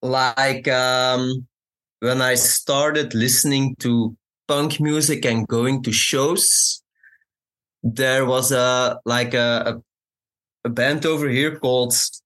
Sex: male